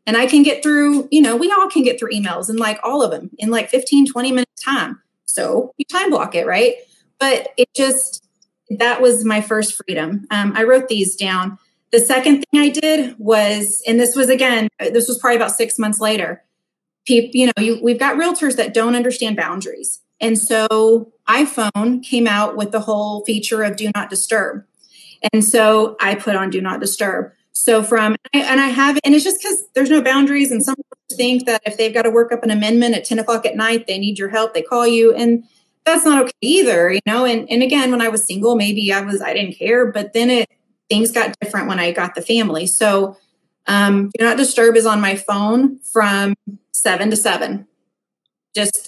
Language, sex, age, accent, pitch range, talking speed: English, female, 30-49, American, 215-260 Hz, 215 wpm